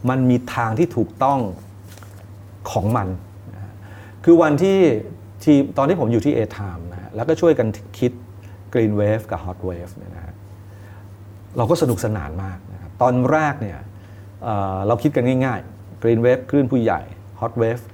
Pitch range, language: 100-125 Hz, Thai